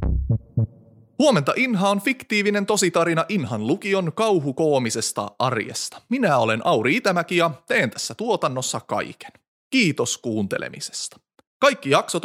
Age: 30-49